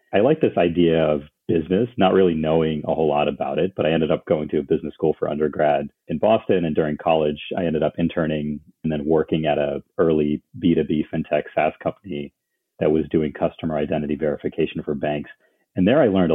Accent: American